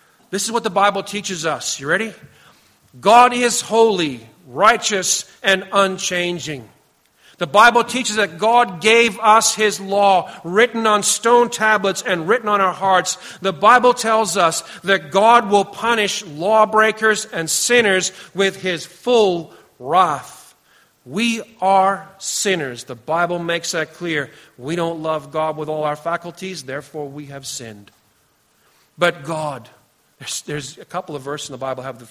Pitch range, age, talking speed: 170-225 Hz, 40-59, 150 wpm